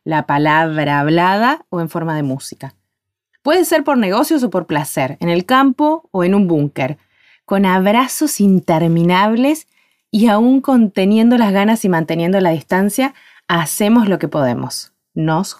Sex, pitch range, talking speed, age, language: female, 170-245 Hz, 150 wpm, 20-39, Spanish